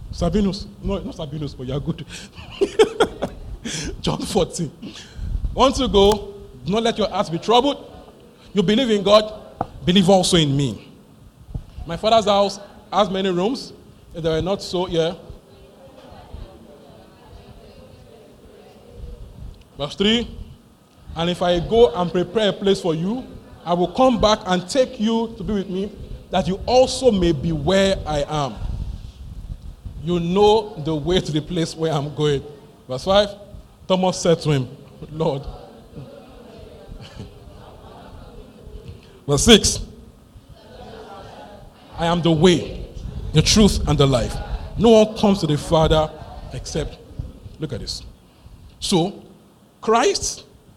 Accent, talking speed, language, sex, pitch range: Nigerian, 130 wpm, English, male, 155-210 Hz